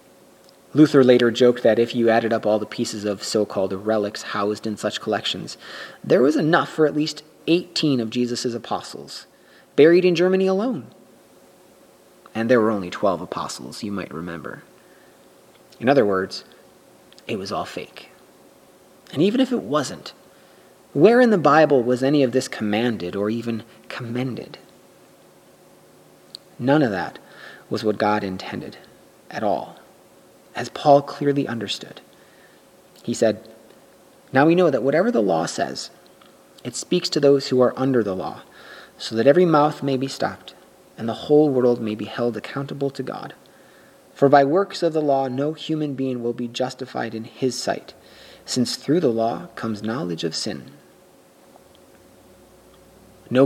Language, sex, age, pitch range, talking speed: English, male, 30-49, 110-140 Hz, 155 wpm